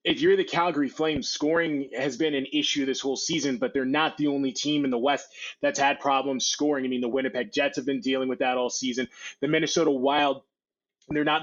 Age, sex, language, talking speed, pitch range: 20-39, male, English, 225 wpm, 130-155 Hz